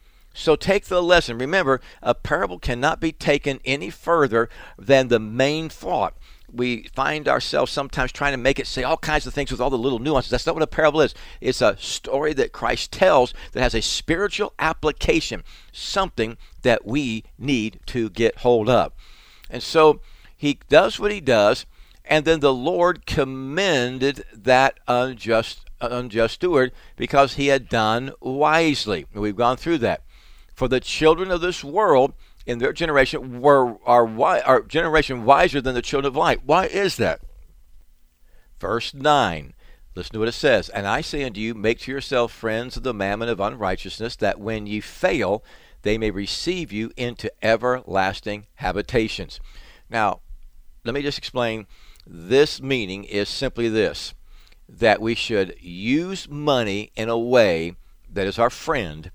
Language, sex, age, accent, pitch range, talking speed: English, male, 60-79, American, 110-145 Hz, 160 wpm